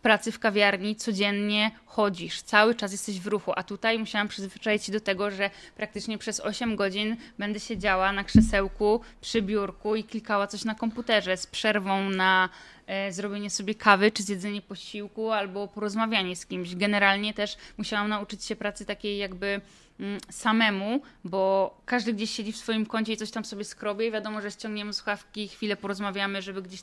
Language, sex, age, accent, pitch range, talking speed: Polish, female, 10-29, native, 200-225 Hz, 170 wpm